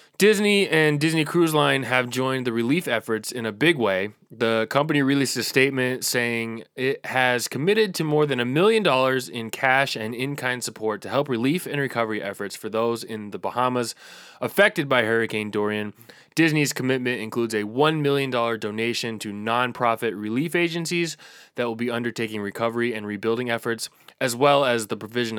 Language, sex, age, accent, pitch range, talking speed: English, male, 20-39, American, 110-135 Hz, 175 wpm